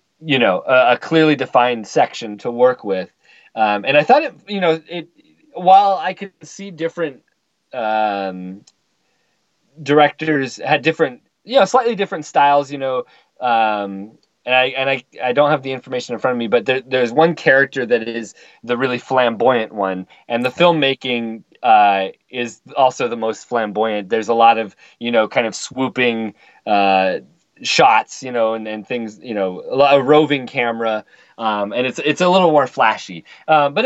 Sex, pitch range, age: male, 115-160 Hz, 30-49